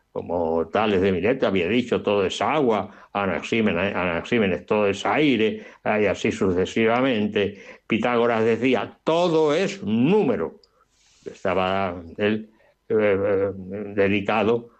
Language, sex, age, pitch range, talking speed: Spanish, male, 60-79, 110-160 Hz, 100 wpm